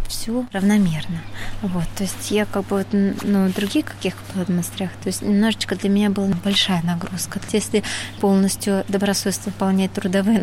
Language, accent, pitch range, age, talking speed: Russian, native, 190-230 Hz, 20-39, 145 wpm